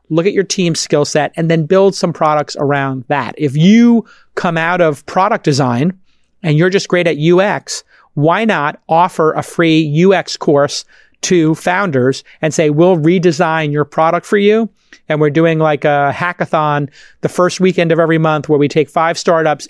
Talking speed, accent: 185 wpm, American